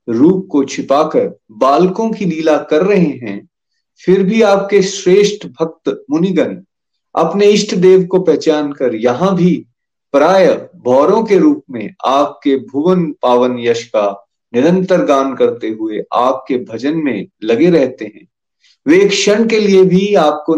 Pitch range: 145-200 Hz